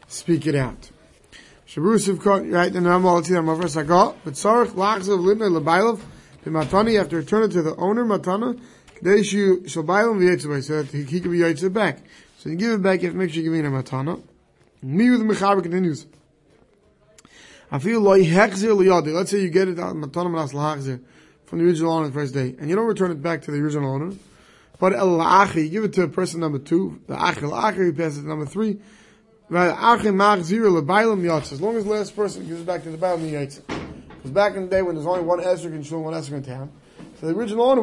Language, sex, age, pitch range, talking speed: English, male, 30-49, 160-200 Hz, 150 wpm